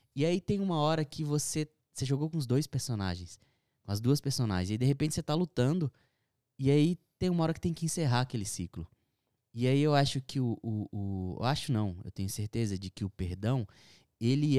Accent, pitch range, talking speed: Brazilian, 105-145 Hz, 220 wpm